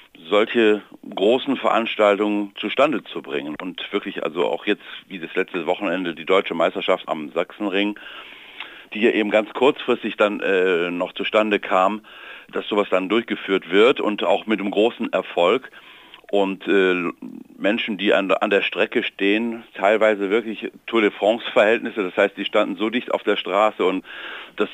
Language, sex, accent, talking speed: German, male, German, 155 wpm